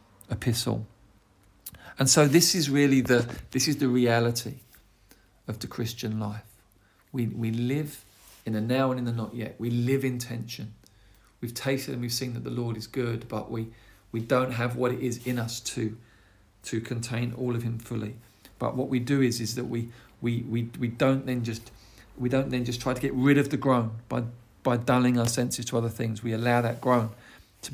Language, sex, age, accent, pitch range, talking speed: English, male, 40-59, British, 115-130 Hz, 205 wpm